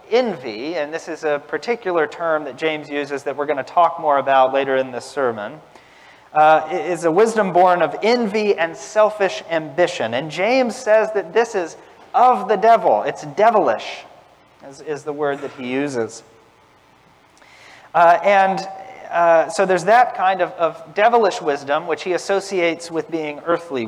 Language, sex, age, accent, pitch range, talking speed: English, male, 40-59, American, 140-195 Hz, 165 wpm